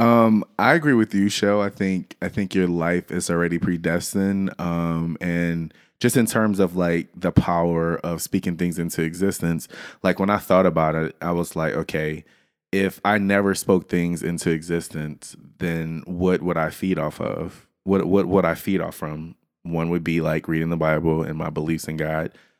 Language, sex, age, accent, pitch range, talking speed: English, male, 20-39, American, 80-95 Hz, 195 wpm